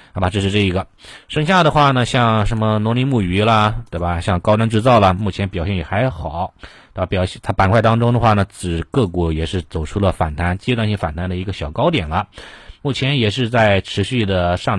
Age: 30-49